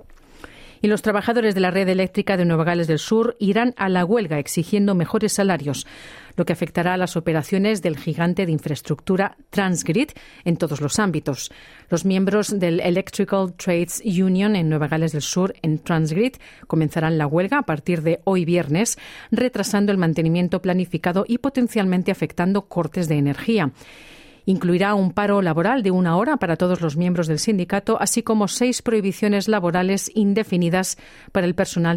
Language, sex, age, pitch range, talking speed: Spanish, female, 40-59, 165-205 Hz, 165 wpm